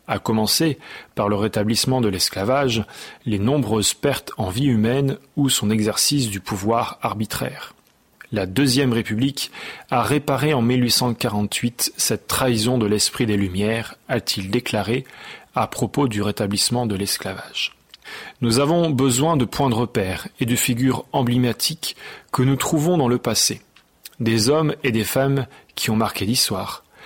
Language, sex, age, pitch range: French, male, 40-59, 110-140 Hz